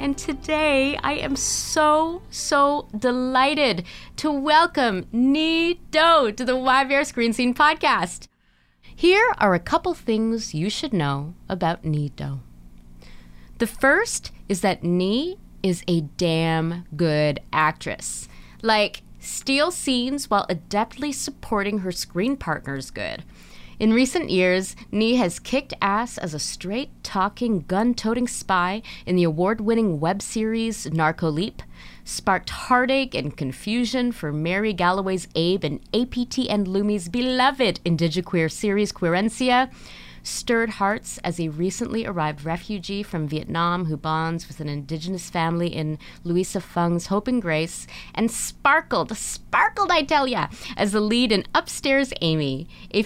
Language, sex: English, female